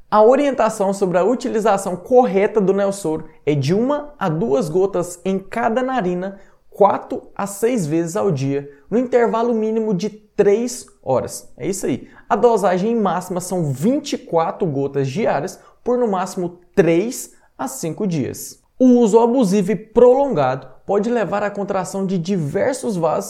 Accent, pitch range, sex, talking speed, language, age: Brazilian, 170-240 Hz, male, 150 wpm, Portuguese, 20-39